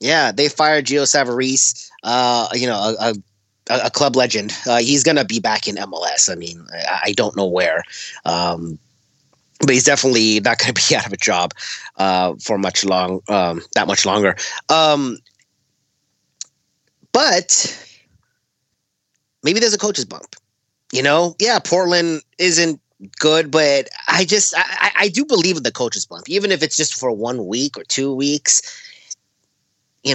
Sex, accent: male, American